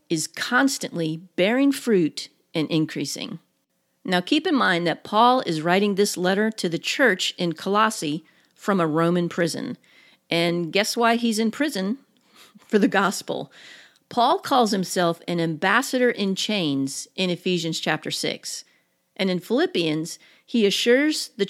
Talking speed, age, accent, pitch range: 140 wpm, 40-59, American, 170-235 Hz